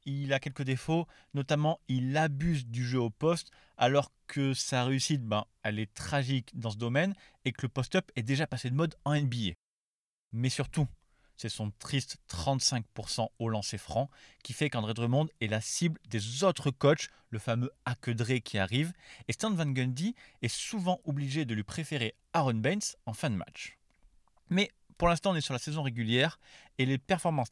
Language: French